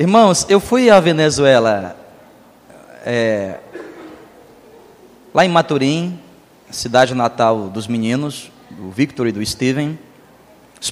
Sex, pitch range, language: male, 125-170 Hz, Portuguese